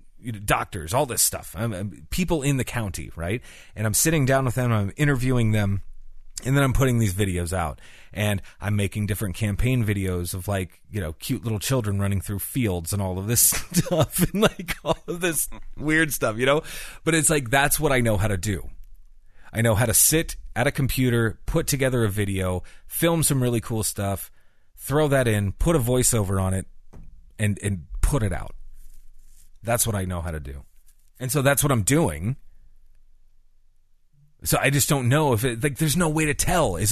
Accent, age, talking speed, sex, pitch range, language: American, 30-49, 200 wpm, male, 95-135 Hz, English